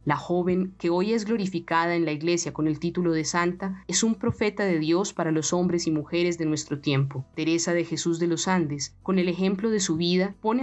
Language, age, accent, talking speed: Spanish, 30-49, Colombian, 225 wpm